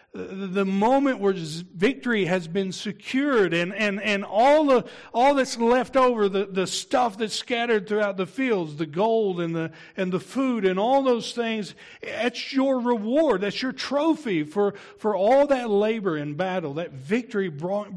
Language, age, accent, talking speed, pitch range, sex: English, 60-79, American, 185 wpm, 150-210 Hz, male